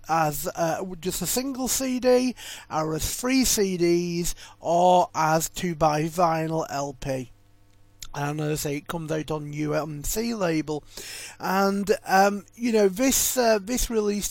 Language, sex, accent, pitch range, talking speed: English, male, British, 160-195 Hz, 145 wpm